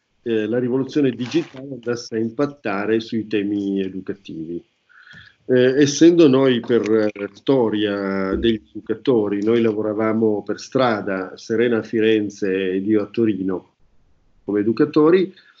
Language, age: Italian, 40-59